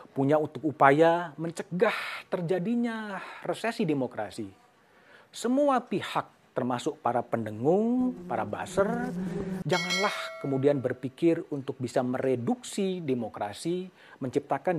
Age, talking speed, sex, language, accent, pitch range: 40-59, 90 wpm, male, Indonesian, native, 125-185 Hz